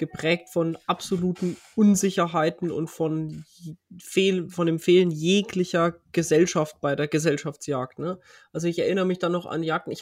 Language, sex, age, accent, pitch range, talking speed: German, male, 20-39, German, 160-180 Hz, 140 wpm